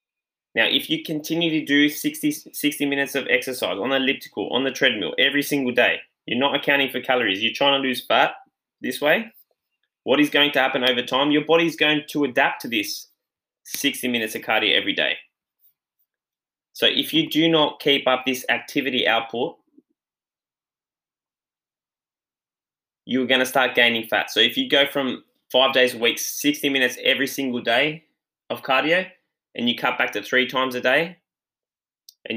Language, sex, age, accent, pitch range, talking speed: English, male, 10-29, Australian, 125-150 Hz, 175 wpm